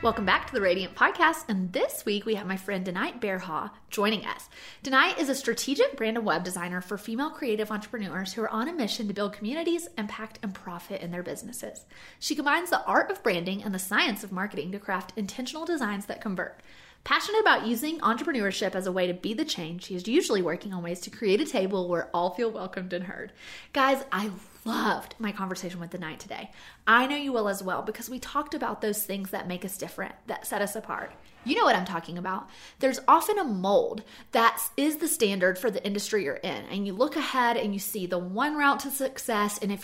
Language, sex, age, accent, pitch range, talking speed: English, female, 30-49, American, 195-270 Hz, 225 wpm